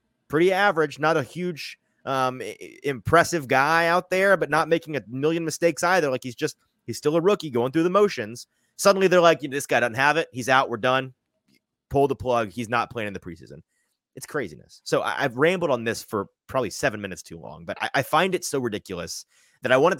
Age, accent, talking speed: 30-49, American, 220 wpm